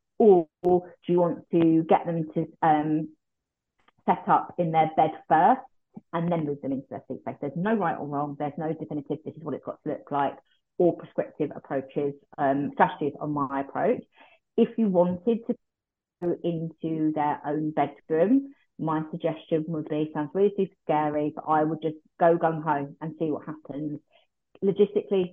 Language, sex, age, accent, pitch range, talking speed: English, female, 30-49, British, 150-175 Hz, 180 wpm